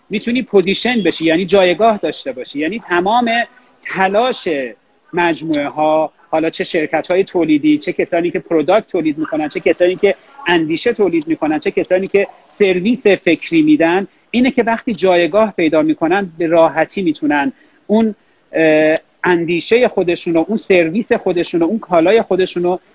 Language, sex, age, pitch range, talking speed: Persian, male, 40-59, 160-220 Hz, 135 wpm